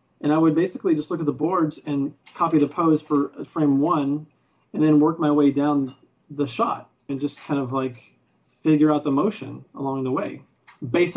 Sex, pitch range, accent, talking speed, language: male, 130-150 Hz, American, 200 wpm, English